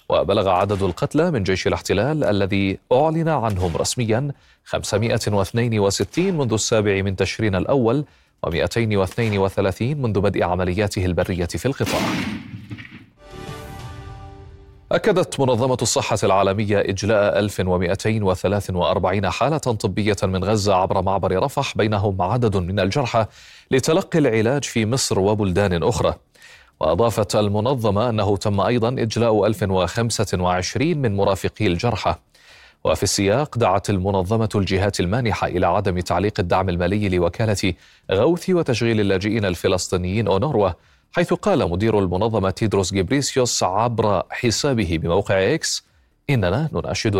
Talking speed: 110 wpm